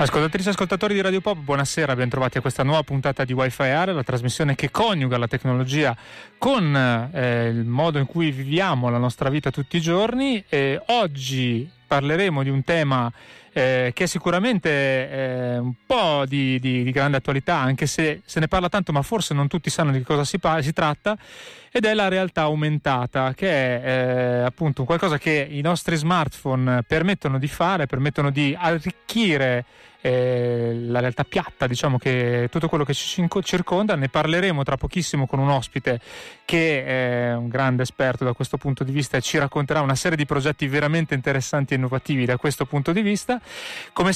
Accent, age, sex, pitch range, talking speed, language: native, 30-49, male, 130-170 Hz, 180 wpm, Italian